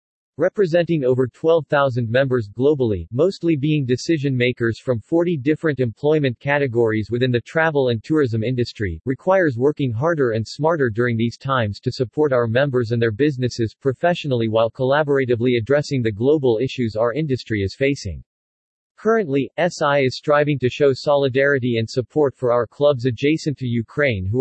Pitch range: 120-150 Hz